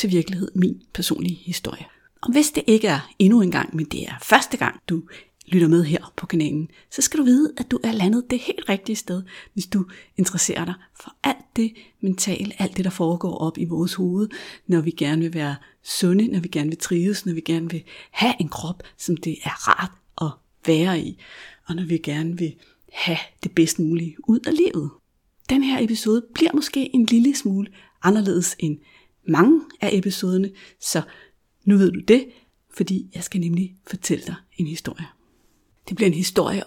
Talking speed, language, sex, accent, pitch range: 195 wpm, Danish, female, native, 170-215 Hz